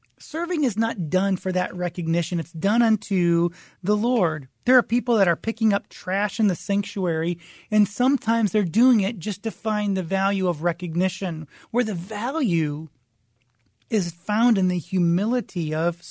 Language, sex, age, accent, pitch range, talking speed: English, male, 30-49, American, 170-220 Hz, 165 wpm